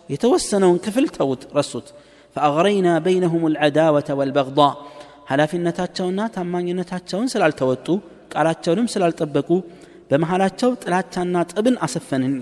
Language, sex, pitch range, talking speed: Amharic, male, 140-185 Hz, 100 wpm